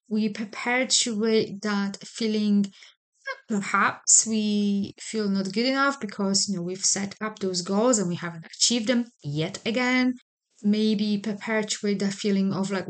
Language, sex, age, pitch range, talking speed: English, female, 20-39, 190-230 Hz, 145 wpm